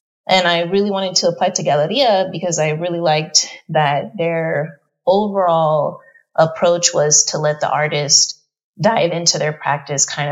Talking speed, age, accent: 150 wpm, 30-49, American